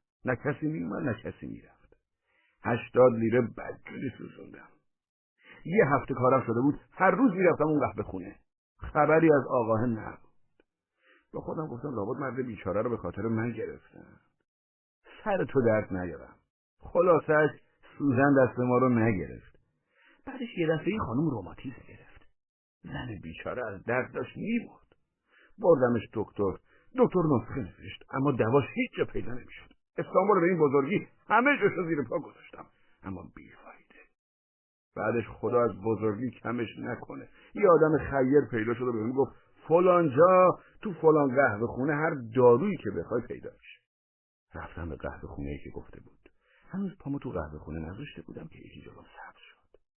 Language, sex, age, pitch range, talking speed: Persian, male, 60-79, 100-155 Hz, 150 wpm